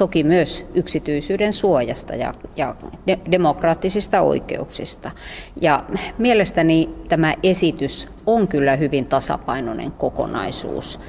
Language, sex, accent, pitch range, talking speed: Finnish, female, native, 140-180 Hz, 95 wpm